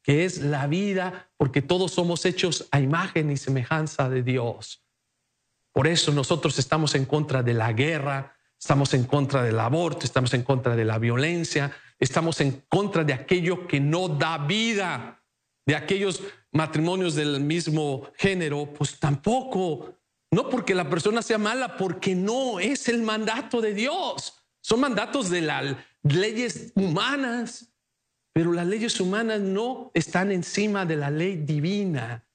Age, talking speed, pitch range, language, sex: 50-69, 150 wpm, 145-205 Hz, English, male